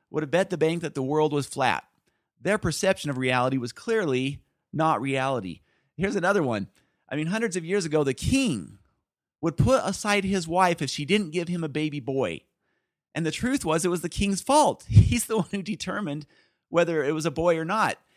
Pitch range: 145-195 Hz